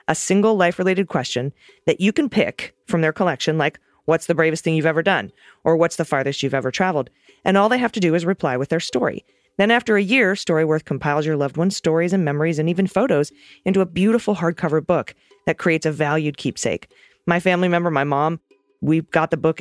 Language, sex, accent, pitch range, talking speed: English, female, American, 140-180 Hz, 215 wpm